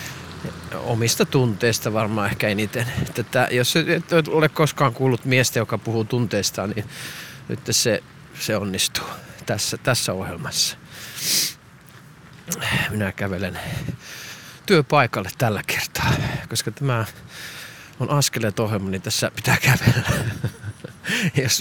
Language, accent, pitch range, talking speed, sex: Finnish, native, 110-140 Hz, 105 wpm, male